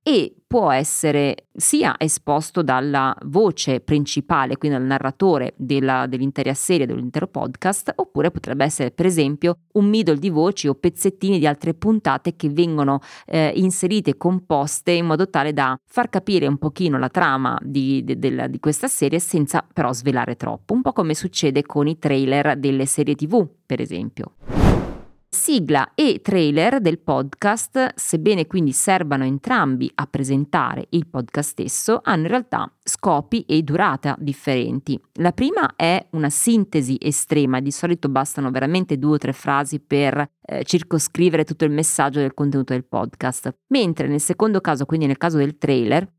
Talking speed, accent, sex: 155 wpm, native, female